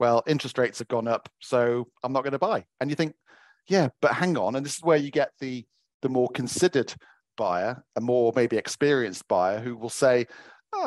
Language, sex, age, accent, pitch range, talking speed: English, male, 40-59, British, 115-140 Hz, 215 wpm